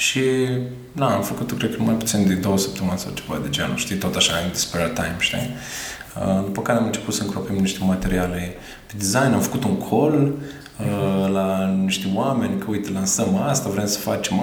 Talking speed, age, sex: 200 wpm, 20-39, male